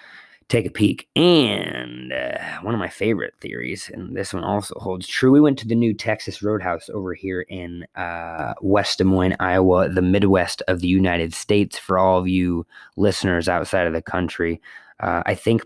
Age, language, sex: 20-39, English, male